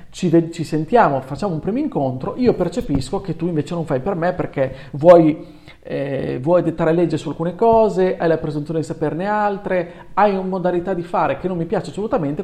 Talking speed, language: 200 wpm, Italian